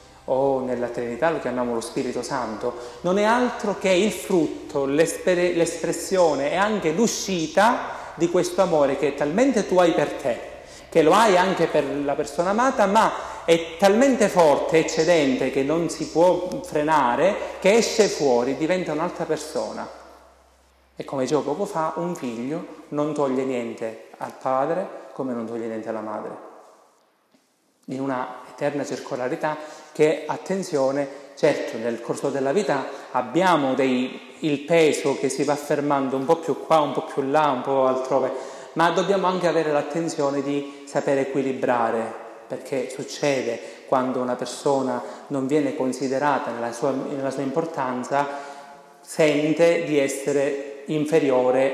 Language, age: Italian, 30-49